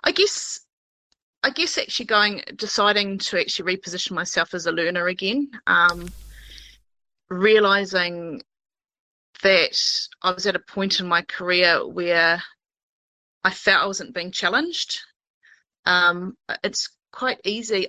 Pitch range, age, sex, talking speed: 175-225 Hz, 30-49, female, 125 wpm